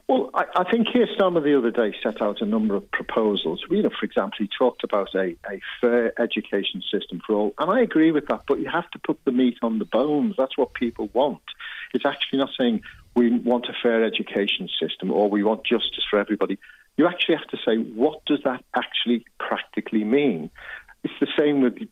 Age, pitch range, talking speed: 50-69, 110-150 Hz, 215 wpm